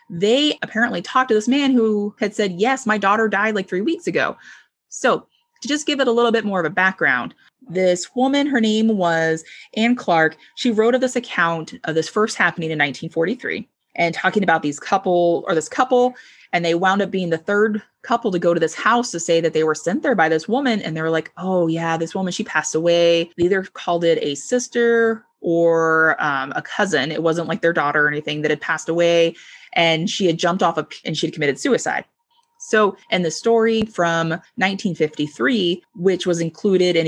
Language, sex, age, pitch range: English, female, 20-39, 165-220 Hz